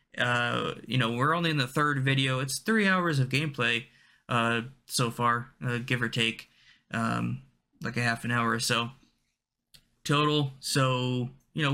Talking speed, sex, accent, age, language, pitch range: 170 wpm, male, American, 20-39, English, 120-150 Hz